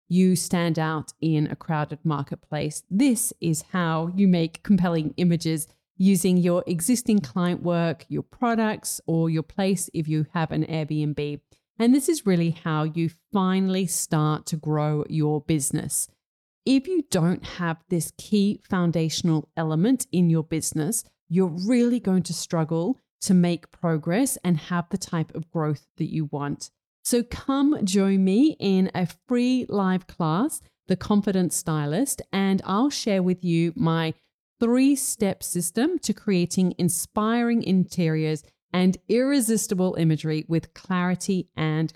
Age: 30-49